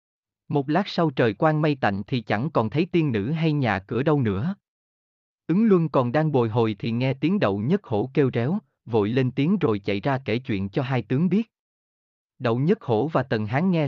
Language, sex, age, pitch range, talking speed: Vietnamese, male, 20-39, 115-155 Hz, 220 wpm